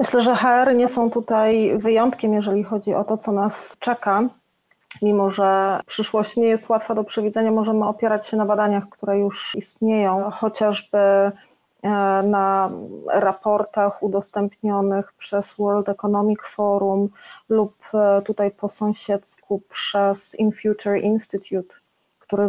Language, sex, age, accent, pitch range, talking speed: Polish, female, 30-49, native, 200-225 Hz, 125 wpm